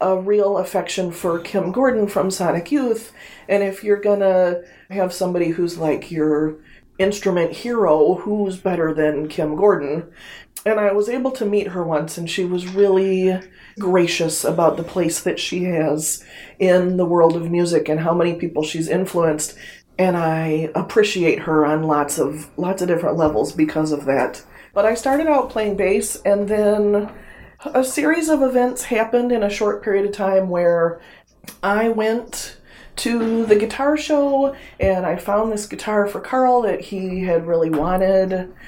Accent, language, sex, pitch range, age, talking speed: American, English, female, 160-205 Hz, 30-49, 165 wpm